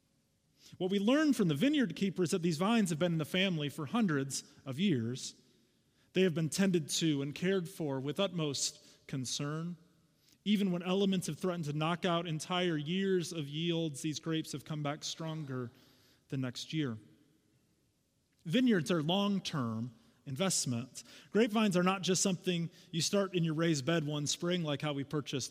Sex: male